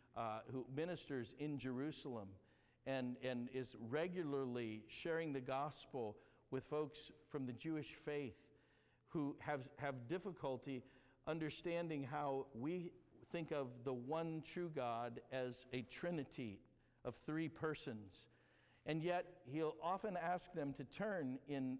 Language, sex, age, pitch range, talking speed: English, male, 50-69, 130-170 Hz, 125 wpm